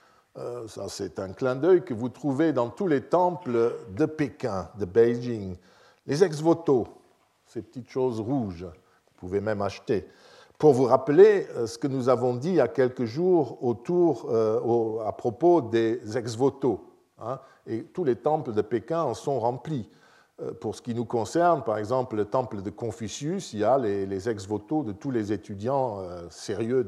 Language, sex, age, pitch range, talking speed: French, male, 50-69, 110-160 Hz, 185 wpm